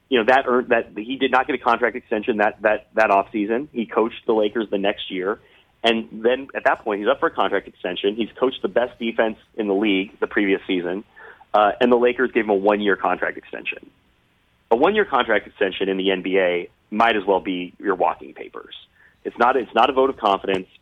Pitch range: 95-115 Hz